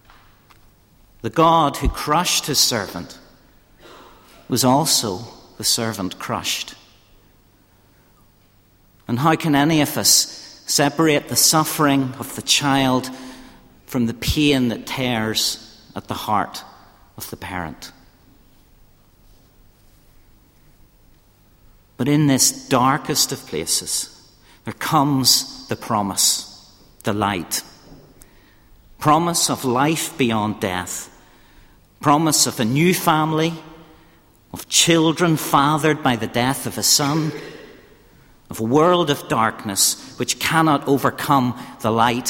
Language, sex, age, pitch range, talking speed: English, male, 50-69, 110-145 Hz, 105 wpm